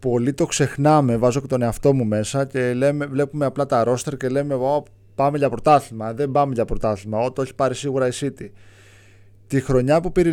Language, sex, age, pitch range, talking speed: Greek, male, 20-39, 105-150 Hz, 215 wpm